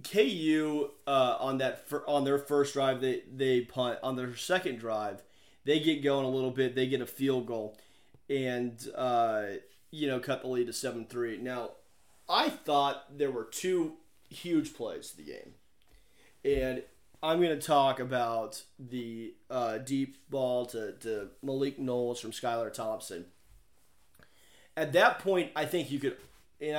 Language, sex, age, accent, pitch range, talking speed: English, male, 30-49, American, 115-155 Hz, 160 wpm